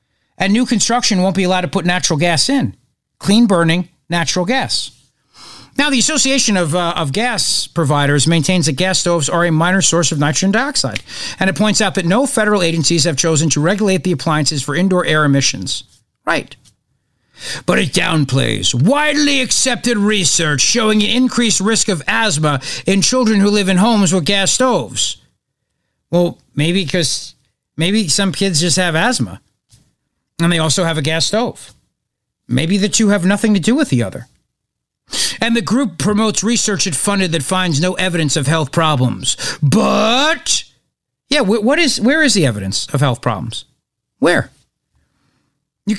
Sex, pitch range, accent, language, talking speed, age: male, 160-215 Hz, American, English, 165 wpm, 50-69